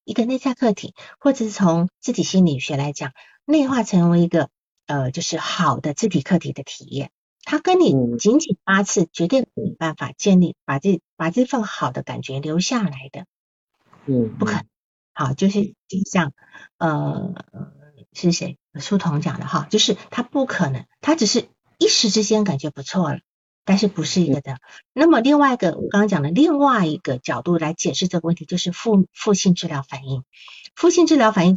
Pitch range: 160-235 Hz